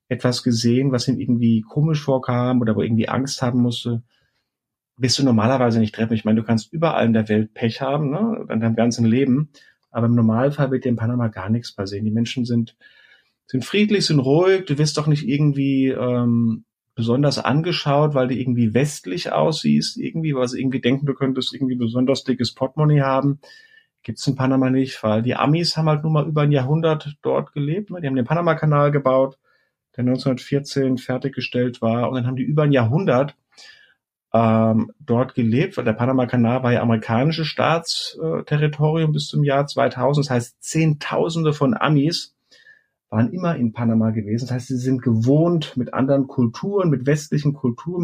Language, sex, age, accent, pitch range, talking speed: German, male, 40-59, German, 120-145 Hz, 180 wpm